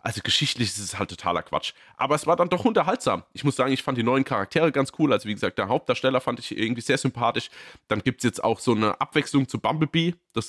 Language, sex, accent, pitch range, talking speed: German, male, German, 115-140 Hz, 250 wpm